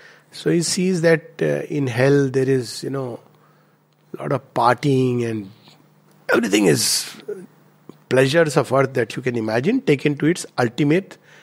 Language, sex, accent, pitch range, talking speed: English, male, Indian, 130-170 Hz, 150 wpm